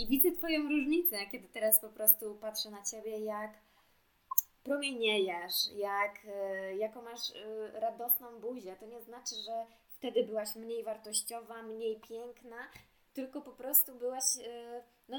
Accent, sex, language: native, female, Polish